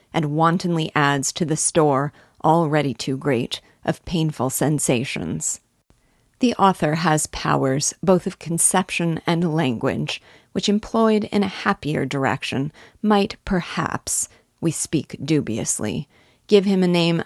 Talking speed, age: 125 wpm, 40-59